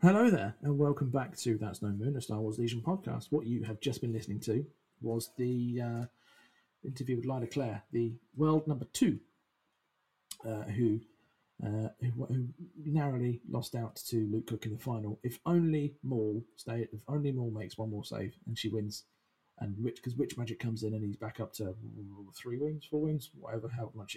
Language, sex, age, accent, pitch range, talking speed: English, male, 40-59, British, 110-150 Hz, 195 wpm